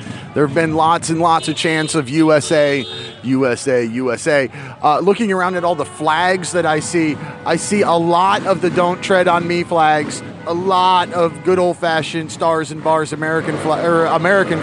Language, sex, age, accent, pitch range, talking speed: English, male, 30-49, American, 155-195 Hz, 185 wpm